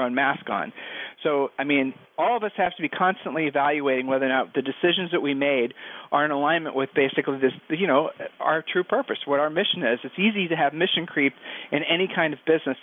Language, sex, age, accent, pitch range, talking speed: English, male, 40-59, American, 140-180 Hz, 225 wpm